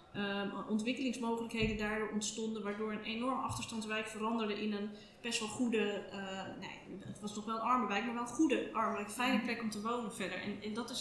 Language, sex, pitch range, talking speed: Dutch, female, 200-235 Hz, 215 wpm